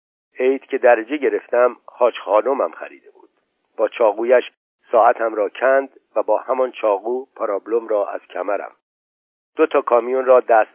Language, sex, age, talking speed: Persian, male, 50-69, 145 wpm